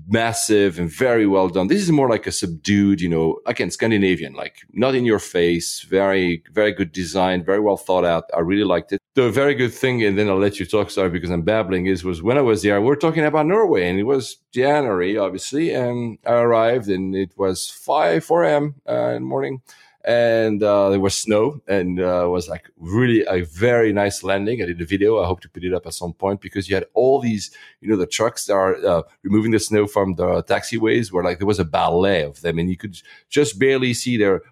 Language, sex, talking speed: English, male, 235 wpm